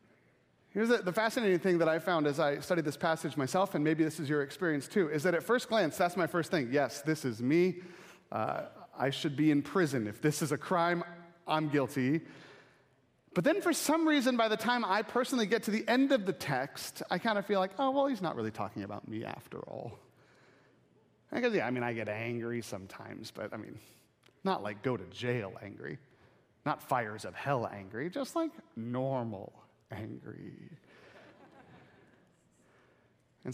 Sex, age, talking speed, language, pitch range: male, 30-49, 185 wpm, English, 120-170 Hz